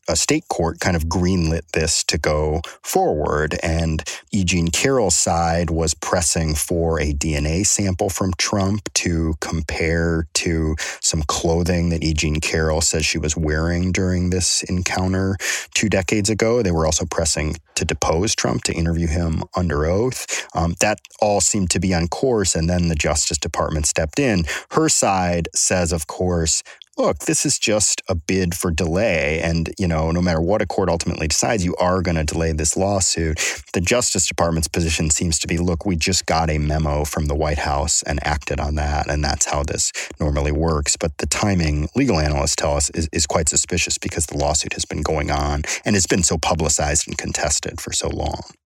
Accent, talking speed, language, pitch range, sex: American, 190 wpm, English, 80-90 Hz, male